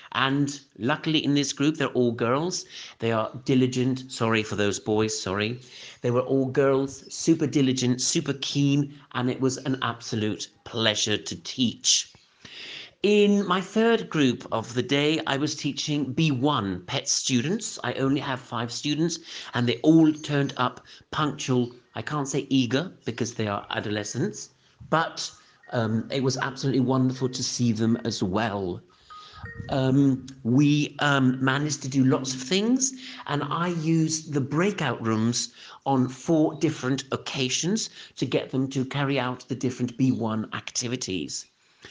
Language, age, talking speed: English, 50-69, 150 wpm